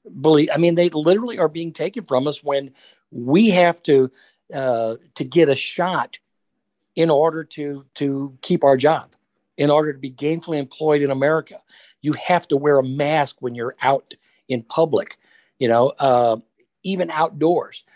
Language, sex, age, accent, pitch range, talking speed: English, male, 50-69, American, 125-165 Hz, 165 wpm